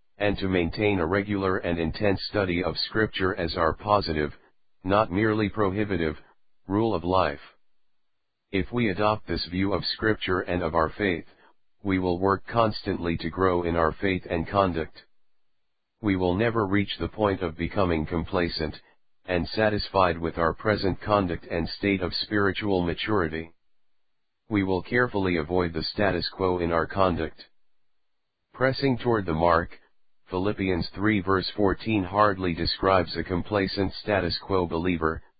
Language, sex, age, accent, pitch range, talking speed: English, male, 50-69, American, 85-100 Hz, 145 wpm